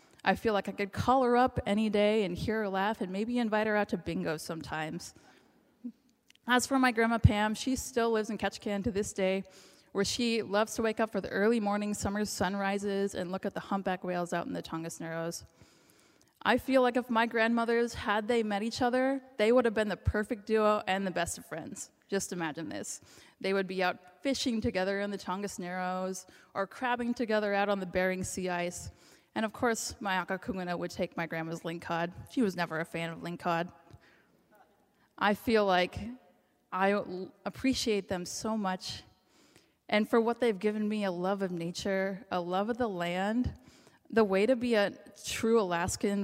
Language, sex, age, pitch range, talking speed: English, female, 20-39, 180-225 Hz, 195 wpm